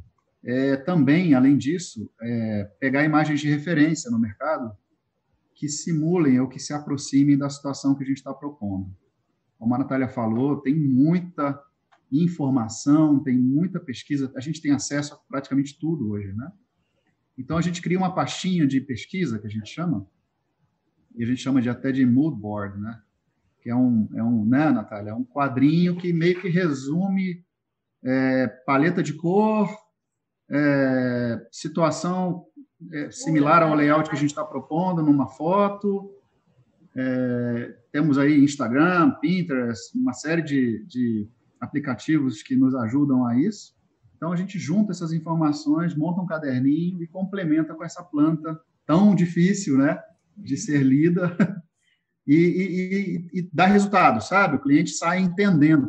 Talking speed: 150 wpm